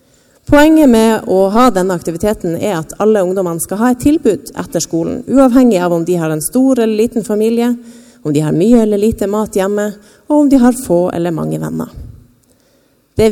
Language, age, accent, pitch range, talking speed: English, 30-49, Norwegian, 170-240 Hz, 195 wpm